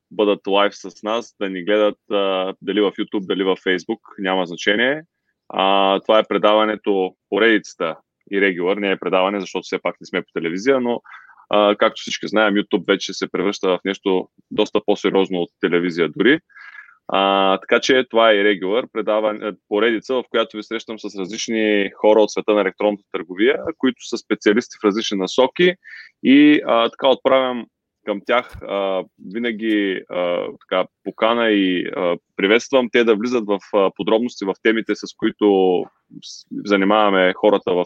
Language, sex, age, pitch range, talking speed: Bulgarian, male, 20-39, 95-115 Hz, 165 wpm